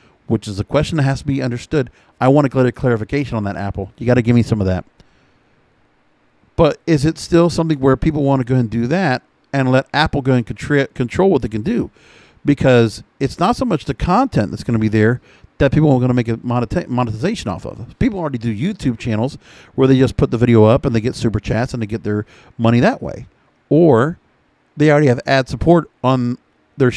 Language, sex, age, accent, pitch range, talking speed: English, male, 50-69, American, 110-140 Hz, 235 wpm